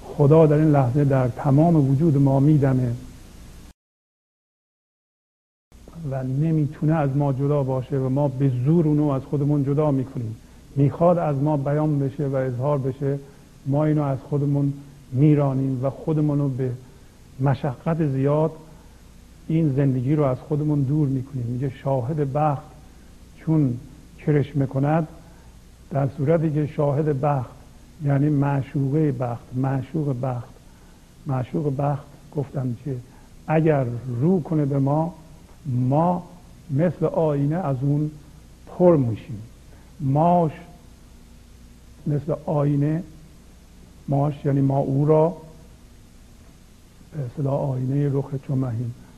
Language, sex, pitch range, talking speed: Persian, male, 130-150 Hz, 115 wpm